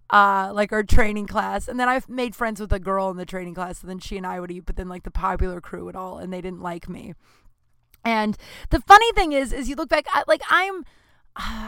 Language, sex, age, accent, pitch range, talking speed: English, female, 20-39, American, 185-275 Hz, 255 wpm